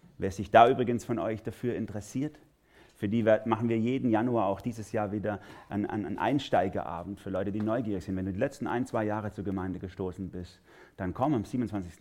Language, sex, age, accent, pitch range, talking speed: German, male, 30-49, German, 95-110 Hz, 210 wpm